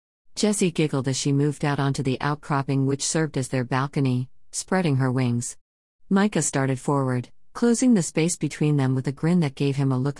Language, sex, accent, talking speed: English, female, American, 195 wpm